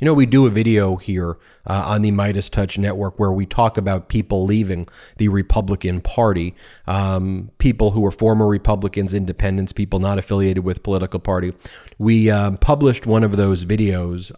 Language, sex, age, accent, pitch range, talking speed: English, male, 30-49, American, 95-110 Hz, 175 wpm